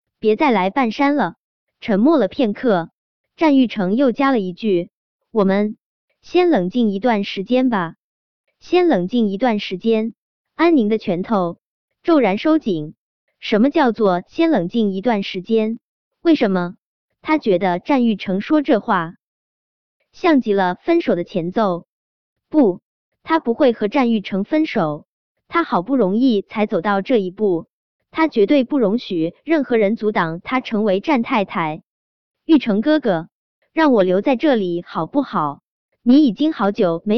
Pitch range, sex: 190-275 Hz, male